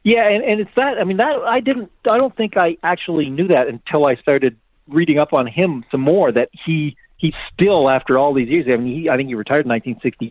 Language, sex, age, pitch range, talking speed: English, male, 40-59, 125-175 Hz, 255 wpm